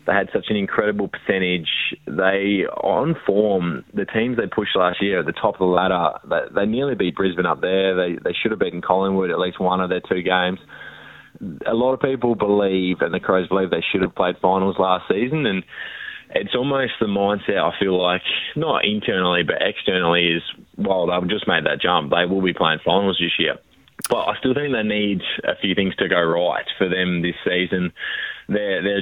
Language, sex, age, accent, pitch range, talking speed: English, male, 20-39, Australian, 90-100 Hz, 210 wpm